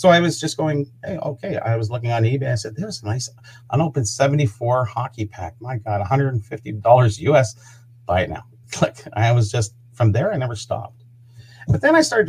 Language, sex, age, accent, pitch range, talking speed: English, male, 40-59, American, 115-145 Hz, 200 wpm